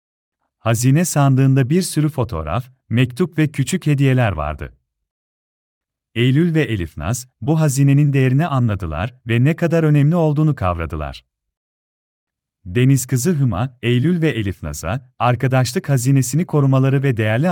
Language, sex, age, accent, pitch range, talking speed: Turkish, male, 40-59, native, 90-145 Hz, 115 wpm